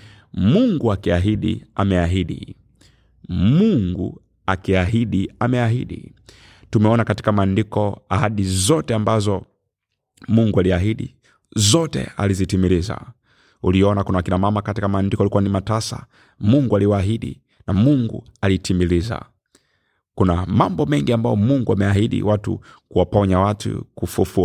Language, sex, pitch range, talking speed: Swahili, male, 95-115 Hz, 100 wpm